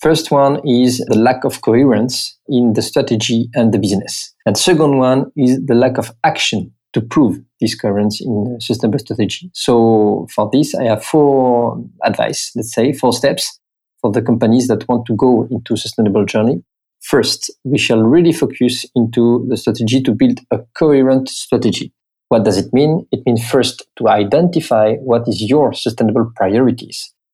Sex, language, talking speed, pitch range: male, French, 170 wpm, 115-140 Hz